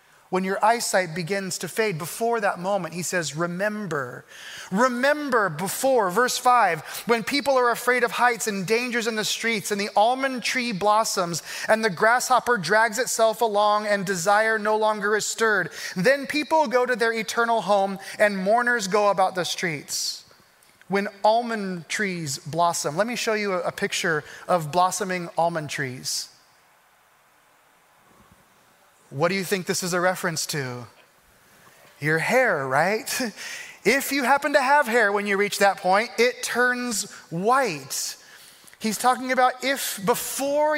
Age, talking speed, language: 30-49, 150 wpm, English